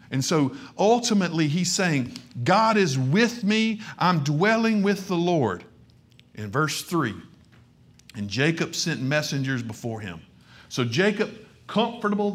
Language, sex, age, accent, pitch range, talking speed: English, male, 50-69, American, 135-190 Hz, 125 wpm